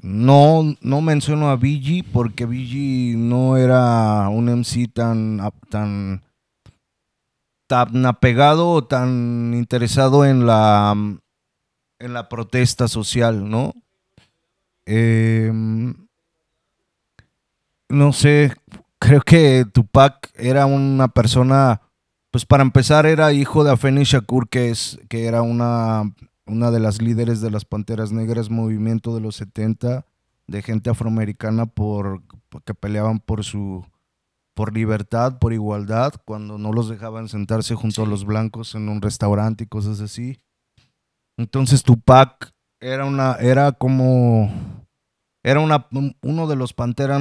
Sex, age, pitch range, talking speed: male, 30-49, 110-135 Hz, 125 wpm